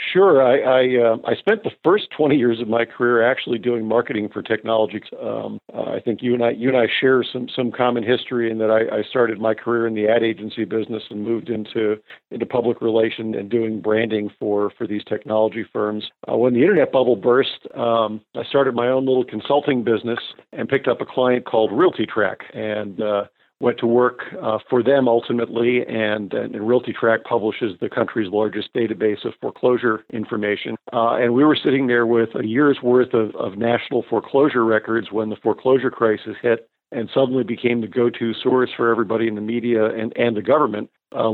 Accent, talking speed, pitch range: American, 200 wpm, 110-125 Hz